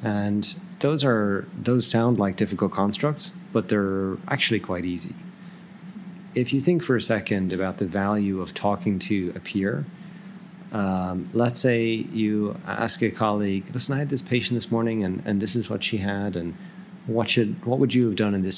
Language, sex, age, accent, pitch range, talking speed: English, male, 30-49, American, 100-140 Hz, 185 wpm